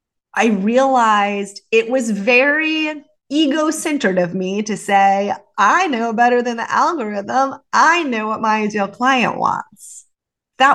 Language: English